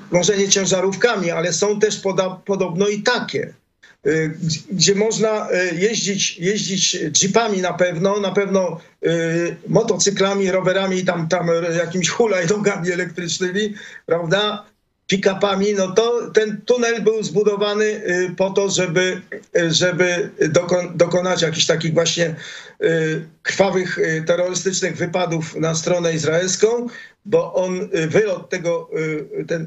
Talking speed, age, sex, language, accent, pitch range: 110 wpm, 50-69, male, Polish, native, 175-210 Hz